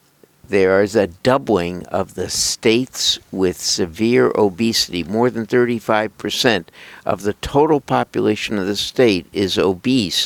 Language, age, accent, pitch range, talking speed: English, 60-79, American, 95-125 Hz, 130 wpm